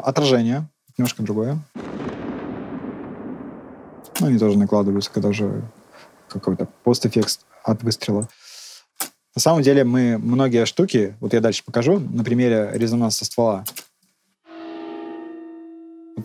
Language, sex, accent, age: Russian, male, native, 20-39